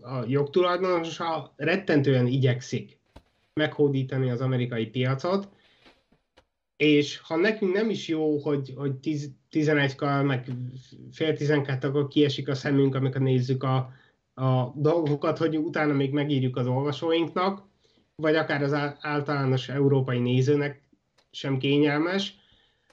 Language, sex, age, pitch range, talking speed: Hungarian, male, 30-49, 135-160 Hz, 120 wpm